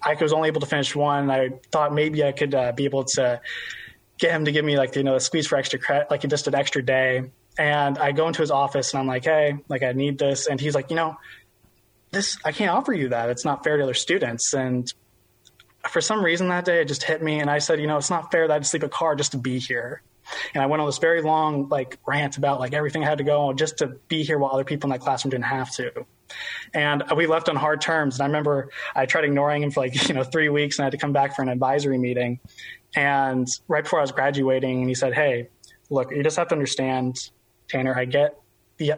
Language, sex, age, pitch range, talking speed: English, male, 20-39, 130-155 Hz, 265 wpm